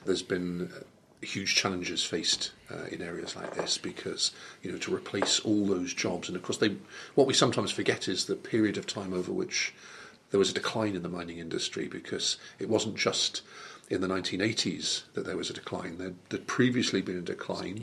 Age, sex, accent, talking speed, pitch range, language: 40-59, male, British, 200 wpm, 95-110 Hz, English